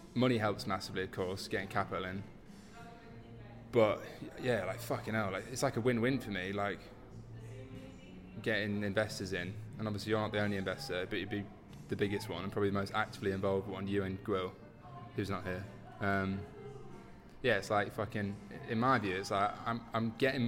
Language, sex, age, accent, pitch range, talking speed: English, male, 20-39, British, 100-115 Hz, 180 wpm